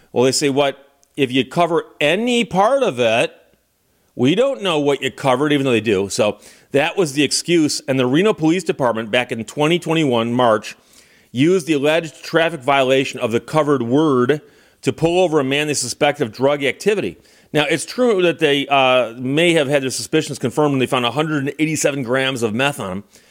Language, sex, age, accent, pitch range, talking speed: English, male, 40-59, American, 130-160 Hz, 195 wpm